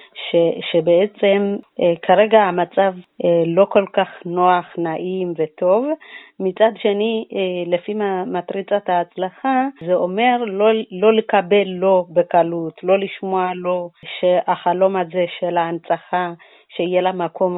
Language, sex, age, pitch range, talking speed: Hebrew, female, 30-49, 170-195 Hz, 110 wpm